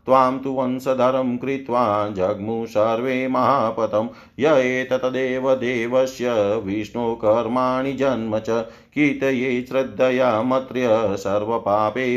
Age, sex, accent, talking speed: 40-59, male, native, 50 wpm